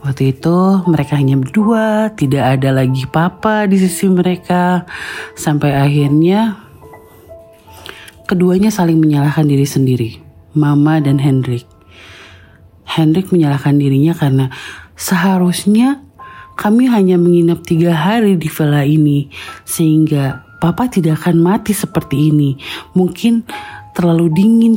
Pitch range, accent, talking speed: 145-185 Hz, native, 110 wpm